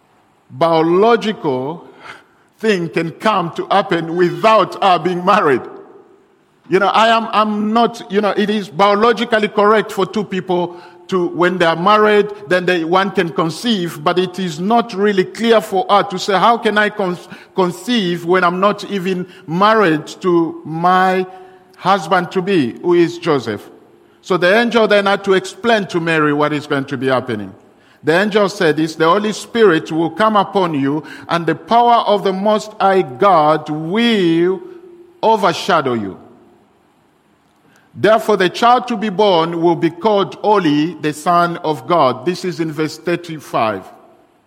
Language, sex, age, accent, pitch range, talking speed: English, male, 50-69, French, 170-210 Hz, 160 wpm